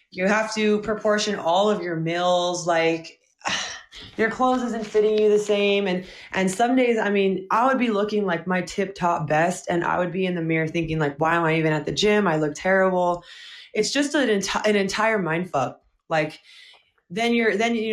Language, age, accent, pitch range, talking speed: English, 20-39, American, 165-210 Hz, 210 wpm